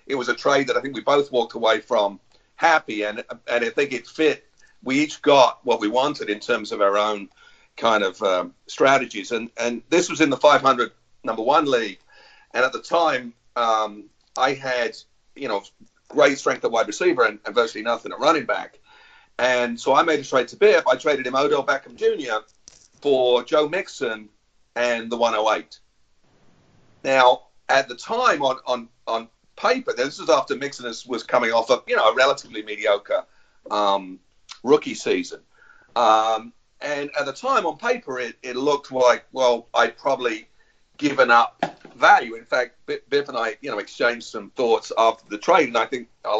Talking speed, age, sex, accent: 190 wpm, 40-59, male, British